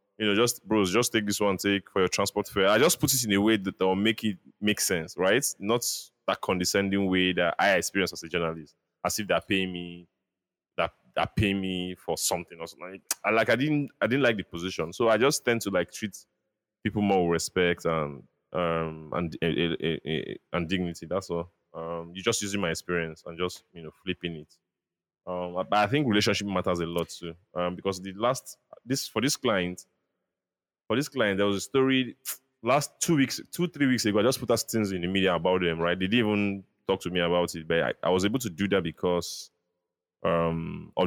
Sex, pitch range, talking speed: male, 85-105 Hz, 230 wpm